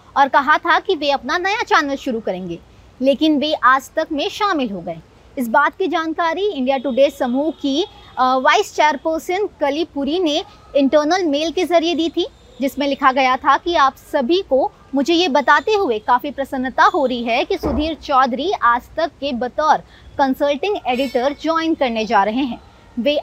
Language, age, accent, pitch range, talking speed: Hindi, 20-39, native, 260-345 Hz, 180 wpm